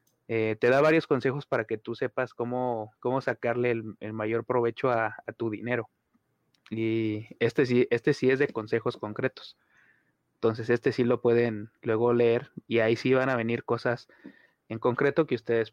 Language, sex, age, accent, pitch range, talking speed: Spanish, male, 30-49, Mexican, 115-135 Hz, 175 wpm